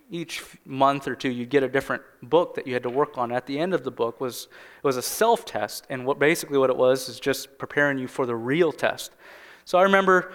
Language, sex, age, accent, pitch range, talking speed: English, male, 20-39, American, 125-160 Hz, 250 wpm